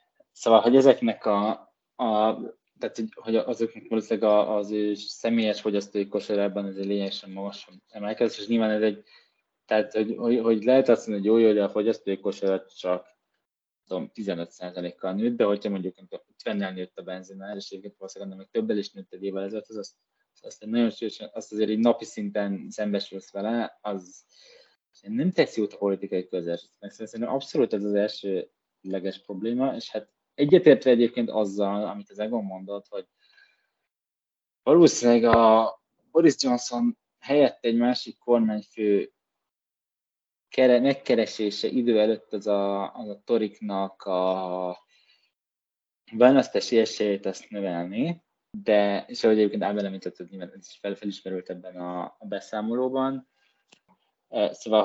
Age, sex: 20-39, male